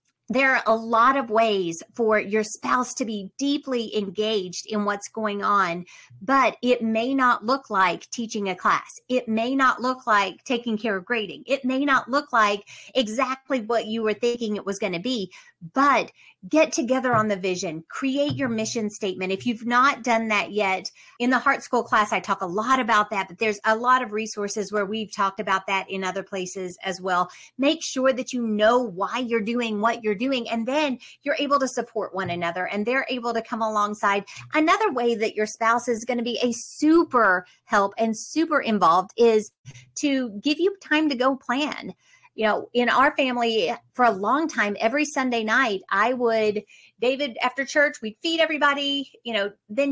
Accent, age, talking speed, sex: American, 40-59, 195 wpm, female